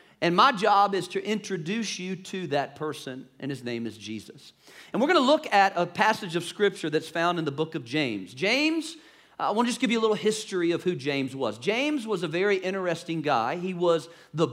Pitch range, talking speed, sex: 170-225 Hz, 225 wpm, male